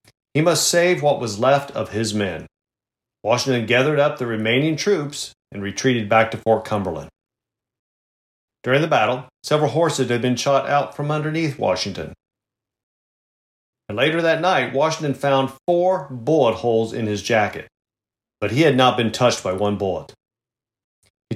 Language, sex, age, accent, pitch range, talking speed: English, male, 40-59, American, 110-150 Hz, 155 wpm